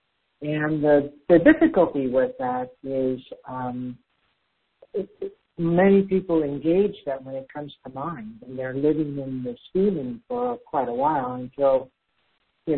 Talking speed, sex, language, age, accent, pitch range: 135 wpm, male, English, 60-79, American, 130-165 Hz